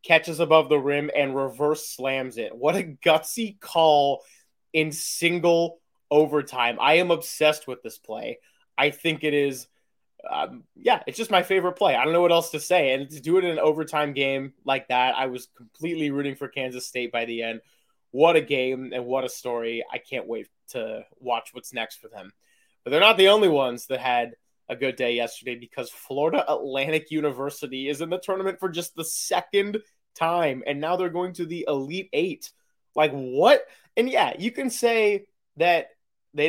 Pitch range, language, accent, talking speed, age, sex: 130-170 Hz, English, American, 190 wpm, 20-39, male